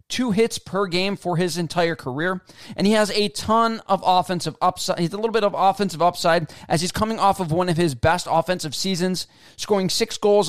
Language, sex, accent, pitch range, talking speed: English, male, American, 155-195 Hz, 210 wpm